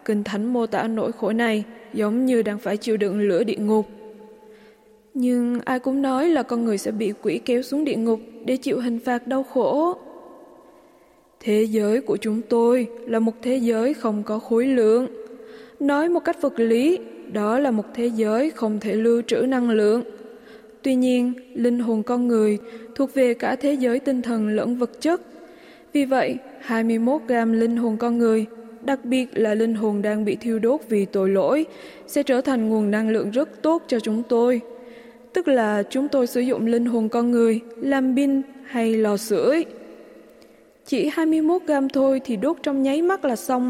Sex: female